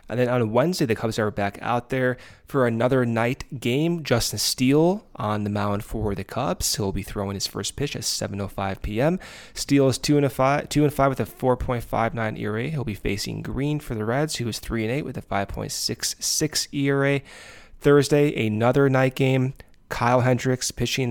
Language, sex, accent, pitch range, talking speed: English, male, American, 105-130 Hz, 170 wpm